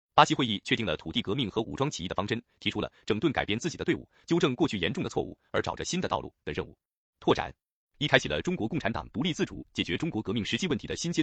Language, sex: Chinese, male